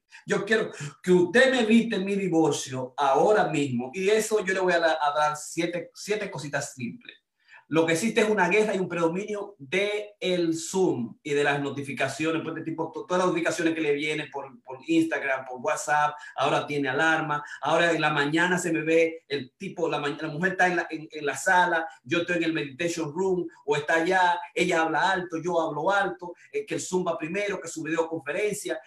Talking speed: 205 wpm